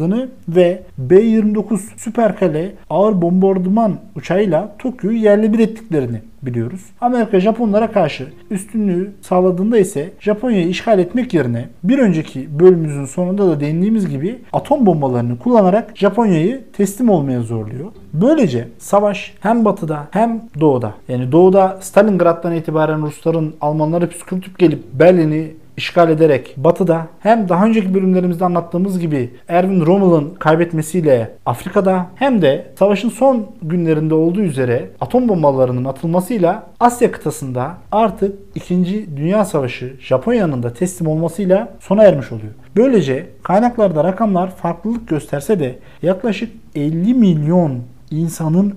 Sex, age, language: male, 50-69, Turkish